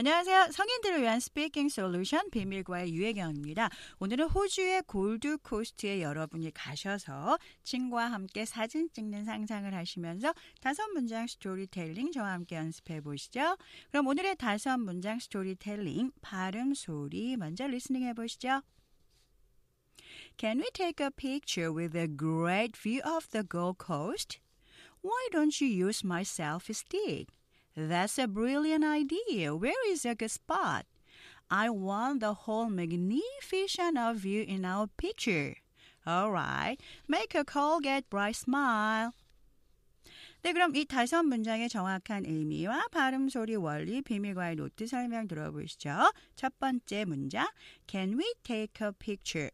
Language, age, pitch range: Korean, 40-59, 185-285 Hz